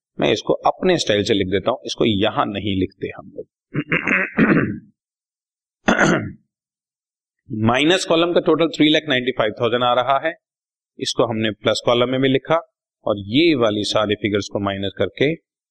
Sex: male